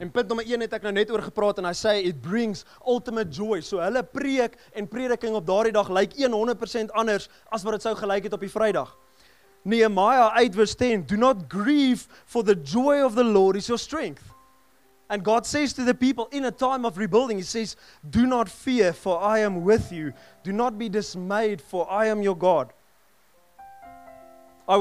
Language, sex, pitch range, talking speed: English, male, 180-235 Hz, 195 wpm